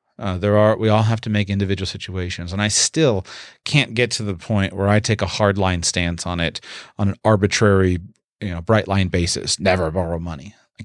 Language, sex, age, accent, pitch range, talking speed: English, male, 30-49, American, 100-125 Hz, 215 wpm